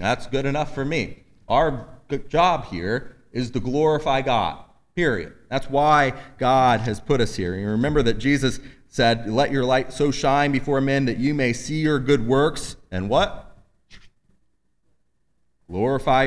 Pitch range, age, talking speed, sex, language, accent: 110-135 Hz, 30-49, 160 wpm, male, English, American